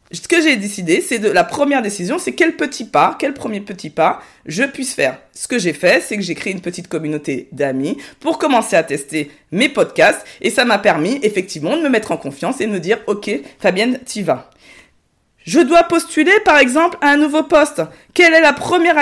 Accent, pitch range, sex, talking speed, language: French, 200-290 Hz, female, 220 wpm, French